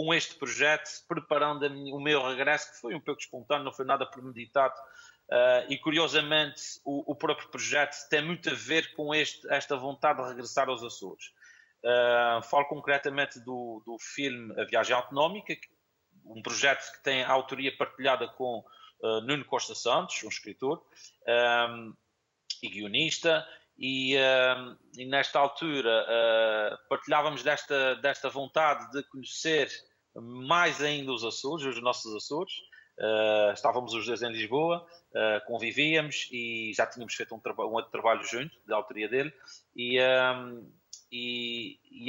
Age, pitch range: 30-49, 120-150 Hz